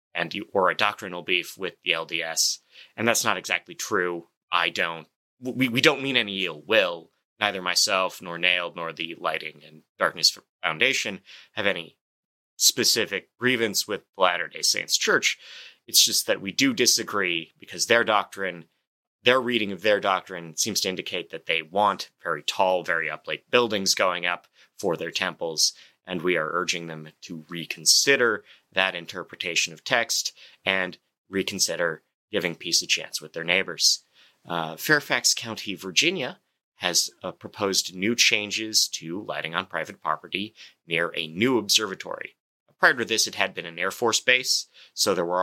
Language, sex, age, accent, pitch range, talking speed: English, male, 30-49, American, 85-110 Hz, 160 wpm